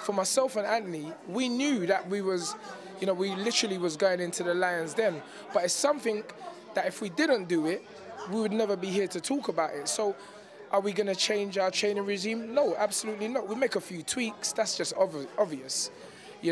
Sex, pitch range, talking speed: male, 175-220 Hz, 215 wpm